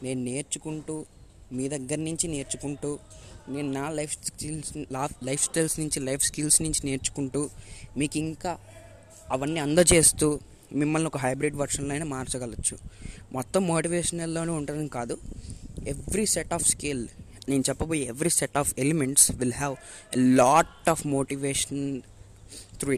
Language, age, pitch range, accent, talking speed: Telugu, 20-39, 120-150 Hz, native, 125 wpm